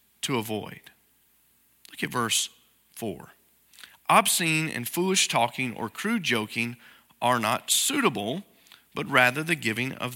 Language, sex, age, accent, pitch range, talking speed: English, male, 40-59, American, 115-175 Hz, 125 wpm